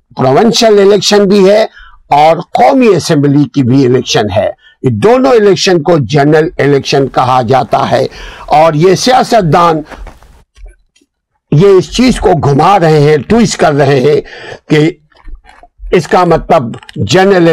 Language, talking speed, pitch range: Urdu, 115 wpm, 145-195 Hz